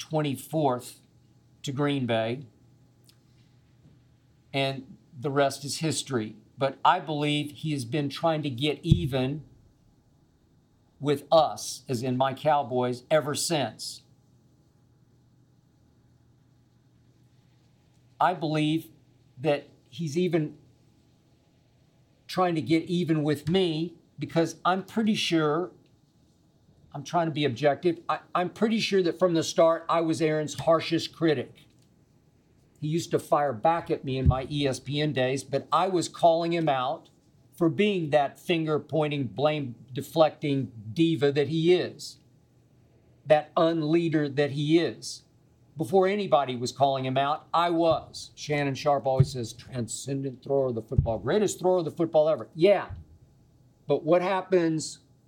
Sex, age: male, 50-69